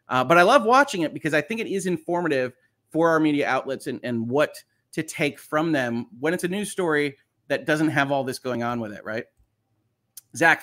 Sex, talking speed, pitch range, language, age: male, 220 wpm, 125-185 Hz, English, 30-49